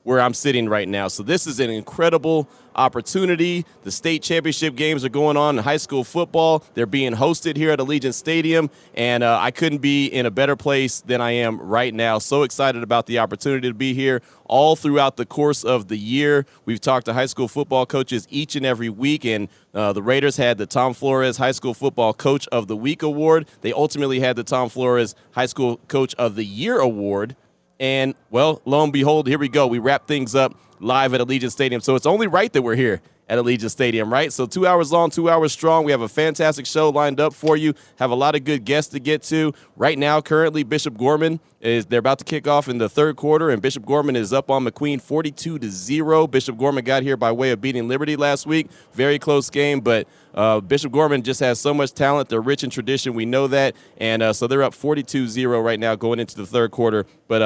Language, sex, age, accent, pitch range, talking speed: English, male, 30-49, American, 120-150 Hz, 230 wpm